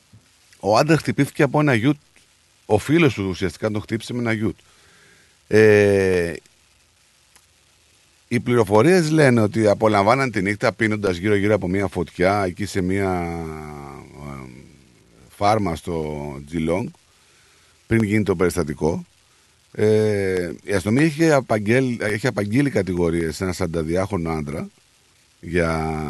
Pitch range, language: 90-130 Hz, Greek